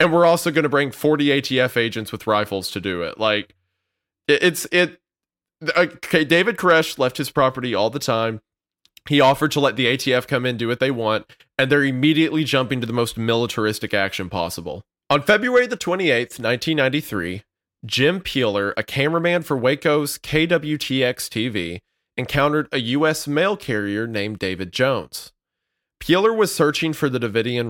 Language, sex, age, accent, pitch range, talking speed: English, male, 20-39, American, 110-155 Hz, 160 wpm